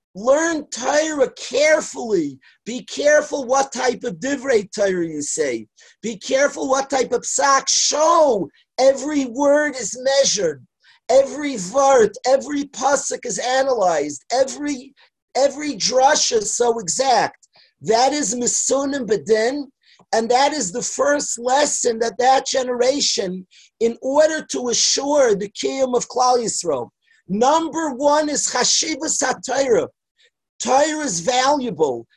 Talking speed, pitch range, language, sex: 120 wpm, 240-295 Hz, English, male